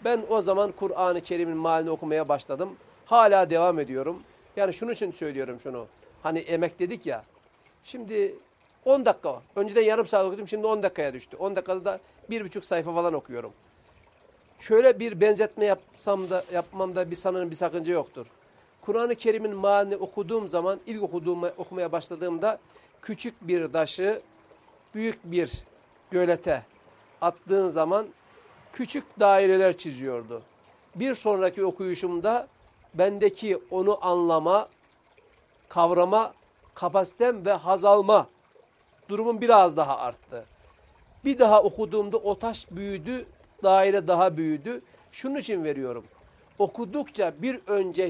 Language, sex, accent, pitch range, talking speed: Turkish, male, native, 170-215 Hz, 125 wpm